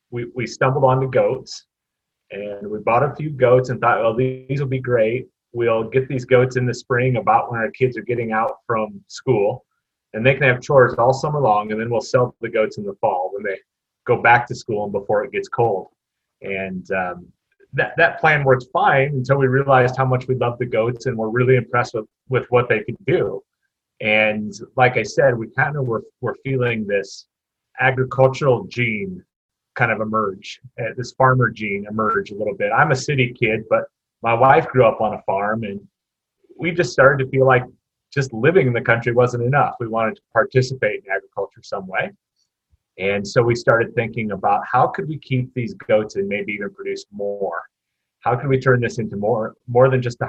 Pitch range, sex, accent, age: 115-135 Hz, male, American, 30-49